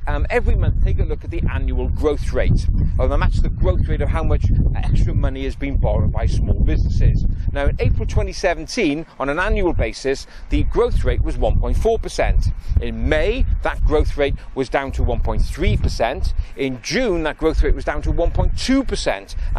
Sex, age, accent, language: male, 40-59, British, English